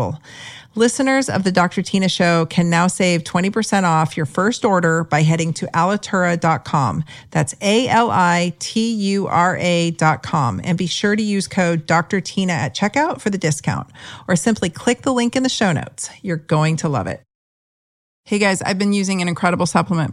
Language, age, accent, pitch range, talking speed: English, 40-59, American, 150-190 Hz, 165 wpm